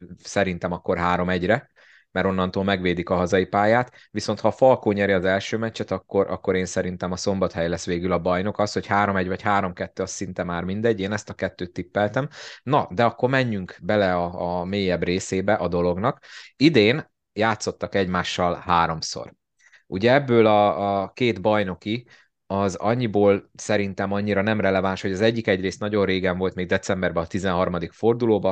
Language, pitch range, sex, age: Hungarian, 90-105 Hz, male, 30-49